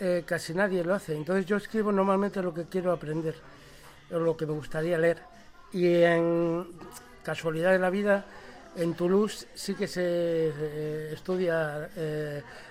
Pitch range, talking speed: 160-185 Hz, 155 wpm